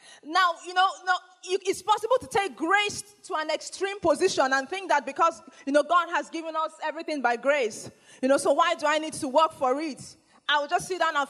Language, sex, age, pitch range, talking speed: English, female, 20-39, 265-360 Hz, 230 wpm